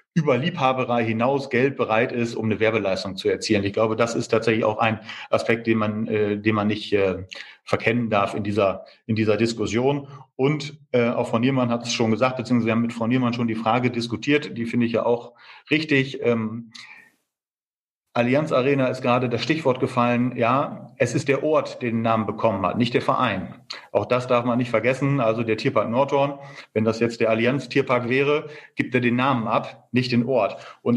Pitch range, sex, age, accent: 110-130 Hz, male, 40-59, German